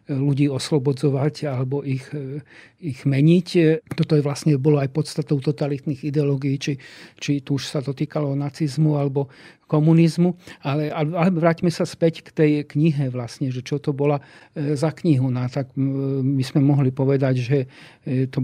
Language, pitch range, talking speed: Slovak, 135-150 Hz, 155 wpm